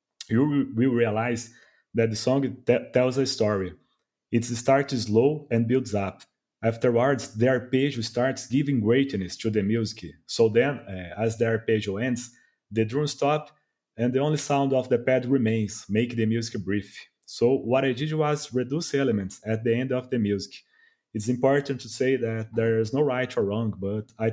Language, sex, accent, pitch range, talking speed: English, male, Brazilian, 110-130 Hz, 180 wpm